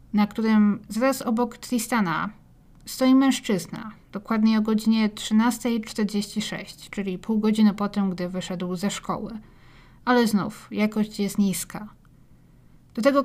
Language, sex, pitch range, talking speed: Polish, female, 190-220 Hz, 120 wpm